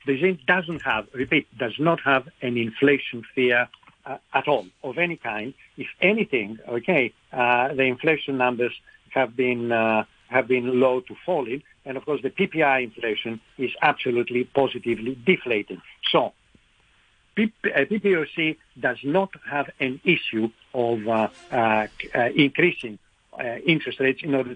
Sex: male